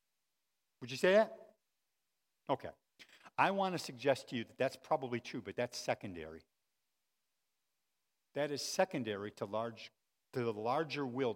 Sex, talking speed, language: male, 135 wpm, English